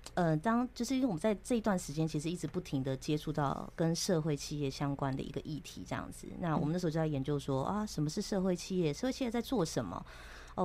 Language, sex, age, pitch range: Chinese, female, 20-39, 145-180 Hz